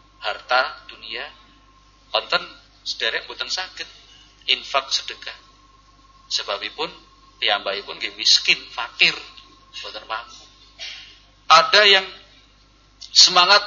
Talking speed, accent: 75 wpm, native